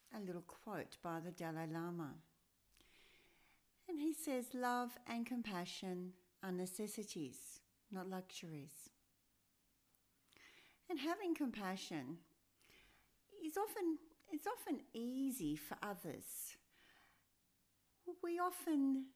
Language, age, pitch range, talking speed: English, 60-79, 165-245 Hz, 90 wpm